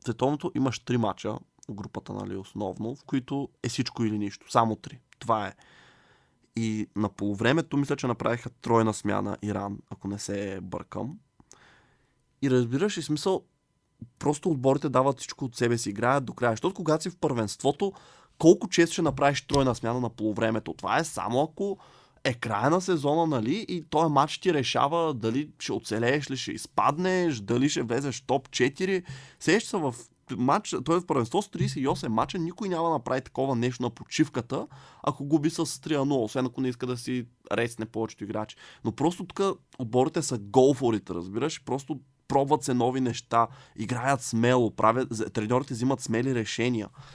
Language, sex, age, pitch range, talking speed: Bulgarian, male, 20-39, 115-145 Hz, 170 wpm